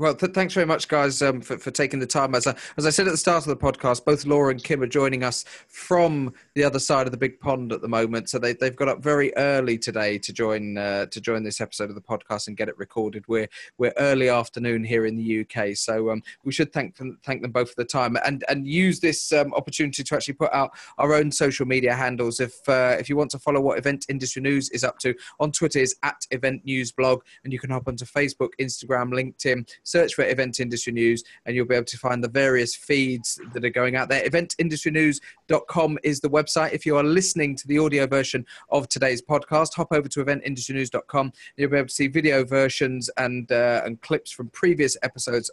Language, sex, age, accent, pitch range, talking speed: English, male, 30-49, British, 120-145 Hz, 235 wpm